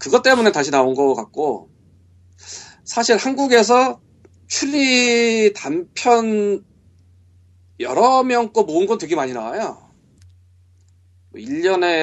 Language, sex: Korean, male